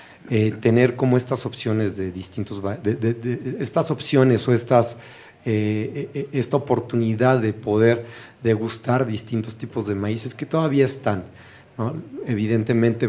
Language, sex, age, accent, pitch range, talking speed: Spanish, male, 40-59, Mexican, 105-125 Hz, 135 wpm